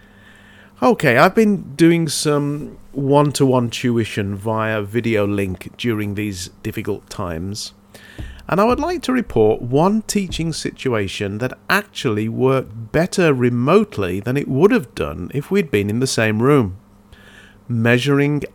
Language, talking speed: English, 135 wpm